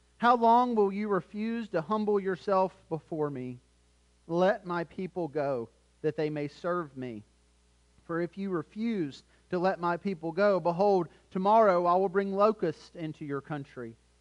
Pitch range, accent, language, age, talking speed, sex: 155-205 Hz, American, English, 40-59, 155 wpm, male